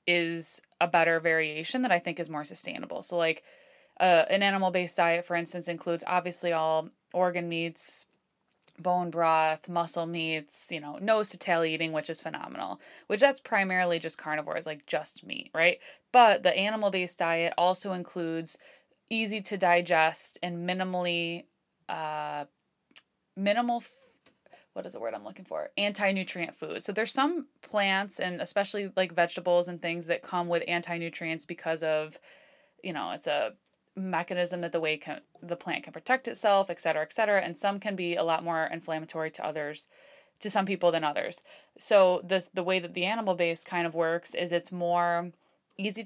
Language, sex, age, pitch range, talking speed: English, female, 20-39, 165-195 Hz, 170 wpm